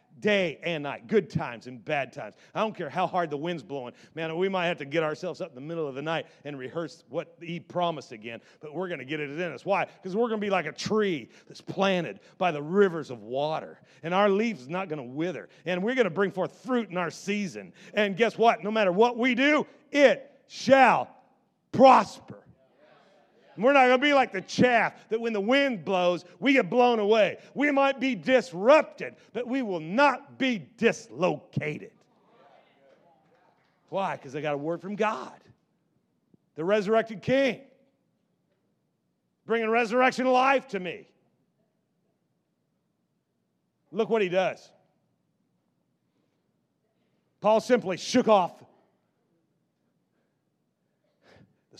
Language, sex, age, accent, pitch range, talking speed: English, male, 40-59, American, 165-240 Hz, 165 wpm